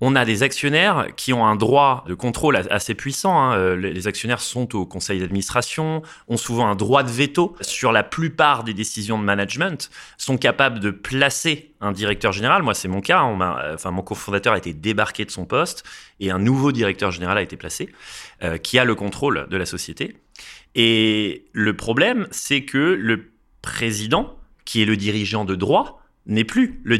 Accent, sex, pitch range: French, male, 105-140 Hz